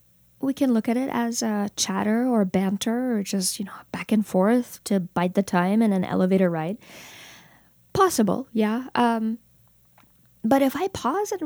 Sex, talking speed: female, 175 wpm